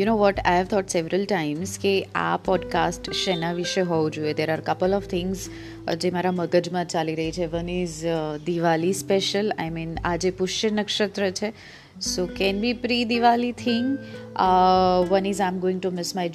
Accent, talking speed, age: native, 185 wpm, 30-49